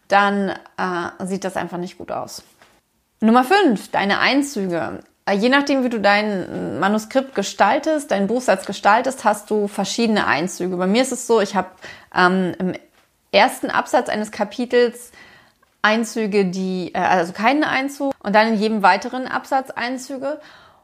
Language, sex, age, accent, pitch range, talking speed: German, female, 30-49, German, 185-220 Hz, 155 wpm